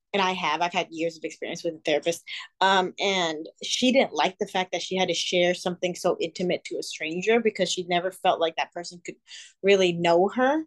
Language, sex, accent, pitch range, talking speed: English, female, American, 175-215 Hz, 225 wpm